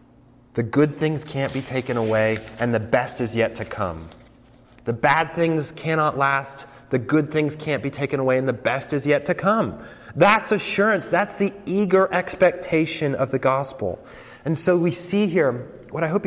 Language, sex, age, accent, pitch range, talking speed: English, male, 30-49, American, 125-165 Hz, 185 wpm